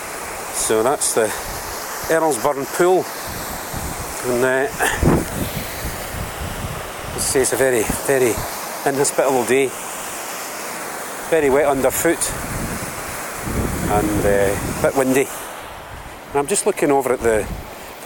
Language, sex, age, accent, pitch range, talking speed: English, male, 40-59, British, 115-140 Hz, 105 wpm